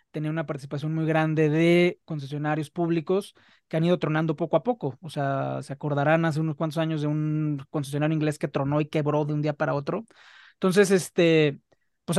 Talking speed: 190 wpm